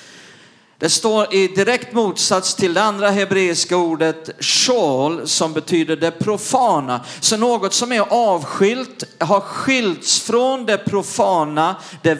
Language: Swedish